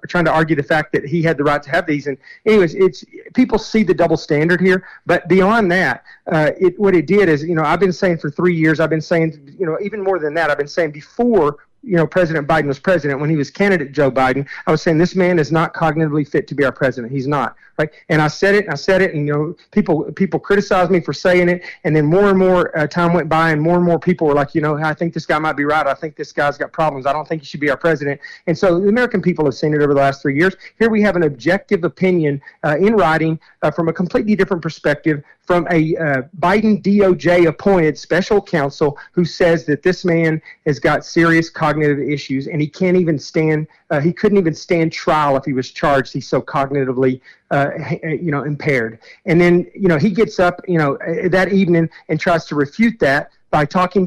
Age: 40-59